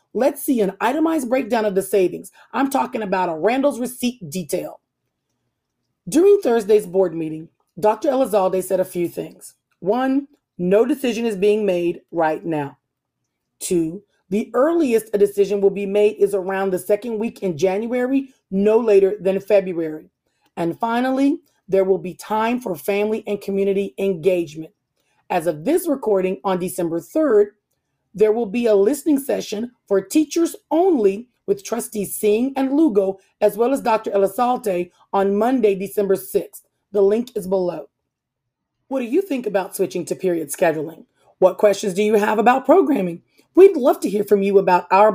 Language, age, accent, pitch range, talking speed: English, 30-49, American, 190-240 Hz, 160 wpm